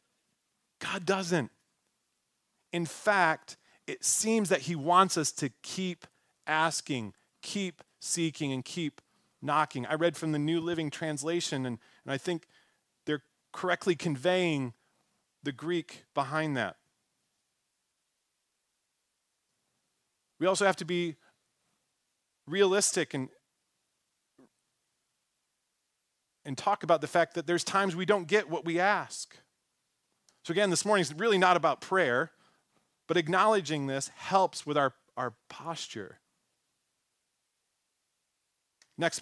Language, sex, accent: English, male, American